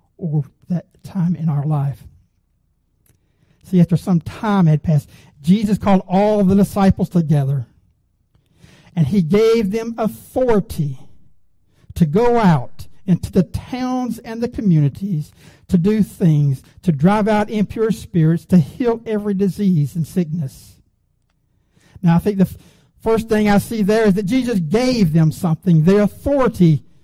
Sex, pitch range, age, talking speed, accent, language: male, 145-200 Hz, 60-79, 140 wpm, American, English